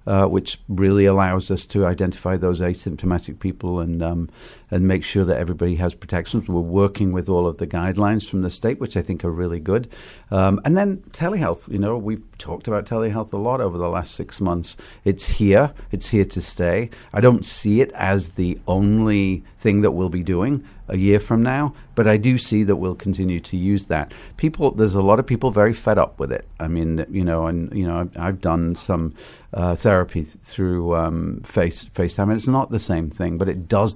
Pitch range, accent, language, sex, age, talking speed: 90-110 Hz, British, English, male, 50-69, 210 wpm